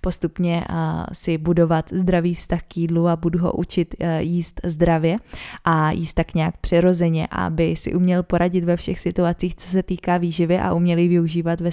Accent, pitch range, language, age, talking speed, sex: native, 165-180 Hz, Czech, 20-39, 170 wpm, female